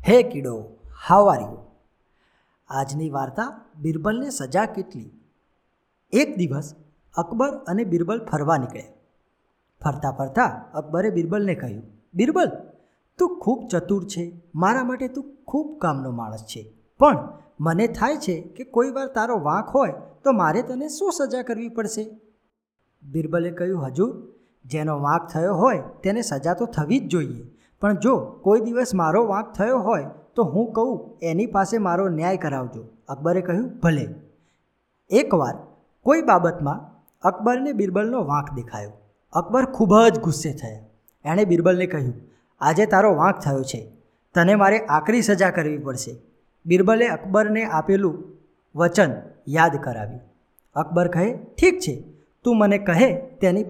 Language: Gujarati